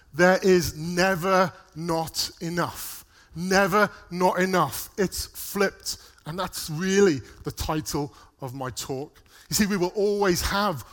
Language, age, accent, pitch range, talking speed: English, 30-49, British, 145-185 Hz, 130 wpm